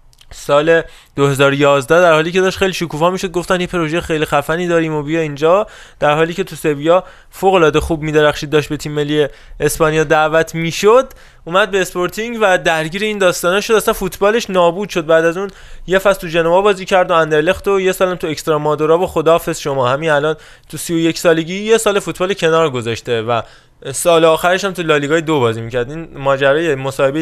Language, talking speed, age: Persian, 190 wpm, 20-39